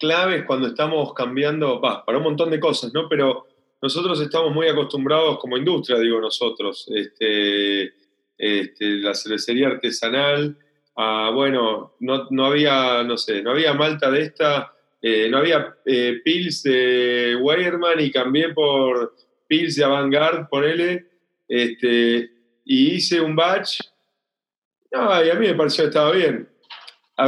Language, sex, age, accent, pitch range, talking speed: Spanish, male, 30-49, Argentinian, 125-155 Hz, 145 wpm